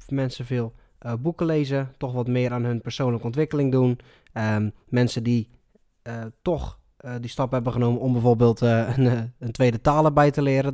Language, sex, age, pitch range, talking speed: Dutch, male, 20-39, 125-145 Hz, 185 wpm